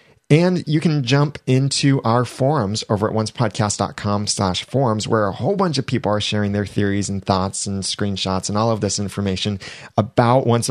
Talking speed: 185 wpm